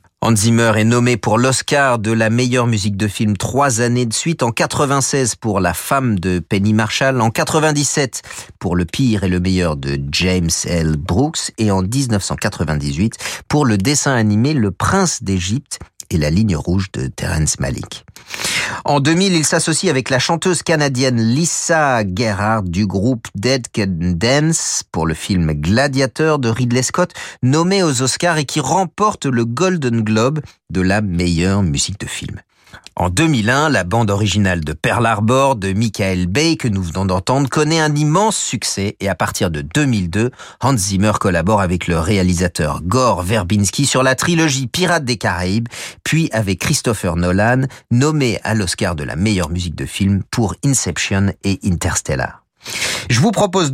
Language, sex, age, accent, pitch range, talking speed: French, male, 40-59, French, 95-140 Hz, 165 wpm